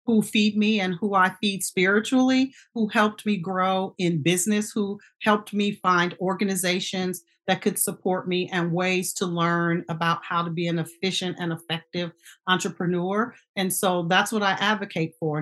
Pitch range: 175-210 Hz